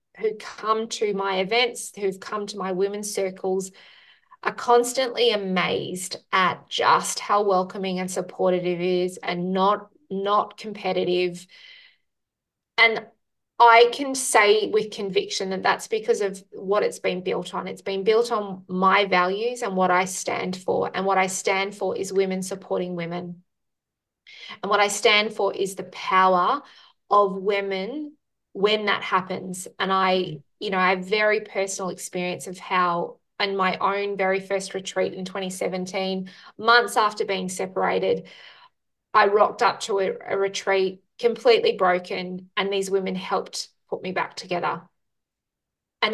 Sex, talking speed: female, 150 wpm